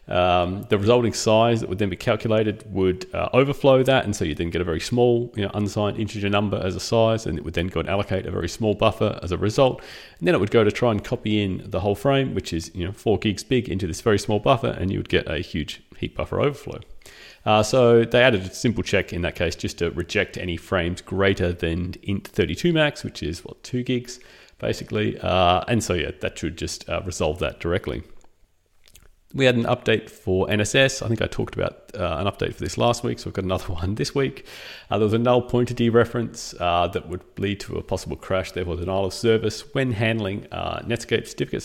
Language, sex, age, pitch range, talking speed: English, male, 30-49, 90-115 Hz, 235 wpm